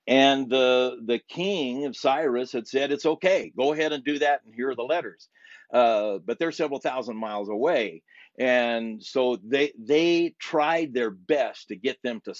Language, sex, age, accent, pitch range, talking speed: English, male, 50-69, American, 125-160 Hz, 185 wpm